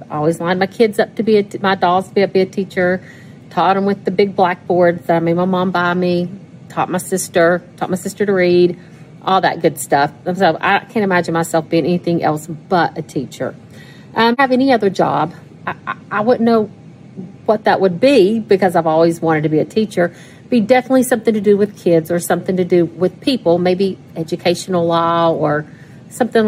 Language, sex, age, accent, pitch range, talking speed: English, female, 40-59, American, 165-205 Hz, 200 wpm